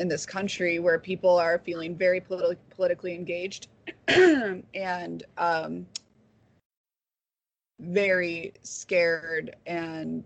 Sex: female